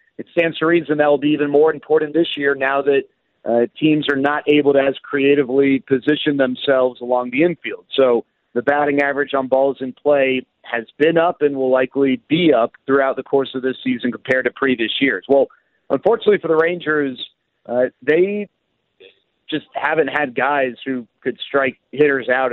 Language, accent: English, American